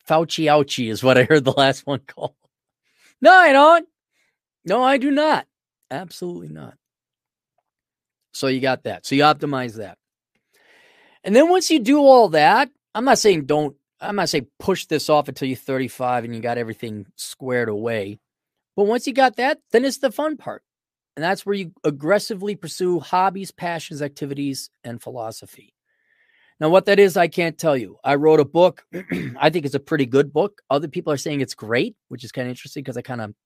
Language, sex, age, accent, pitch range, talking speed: English, male, 30-49, American, 130-185 Hz, 190 wpm